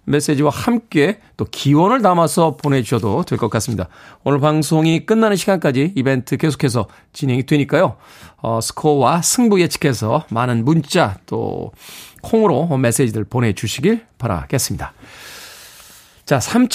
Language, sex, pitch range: Korean, male, 130-190 Hz